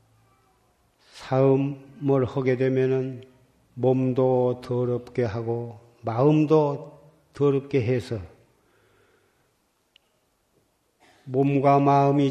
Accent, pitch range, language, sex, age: native, 120-135 Hz, Korean, male, 40-59